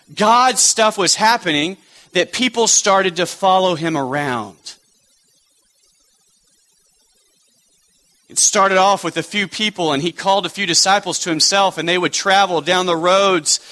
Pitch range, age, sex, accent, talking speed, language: 185-245 Hz, 40-59, male, American, 145 wpm, English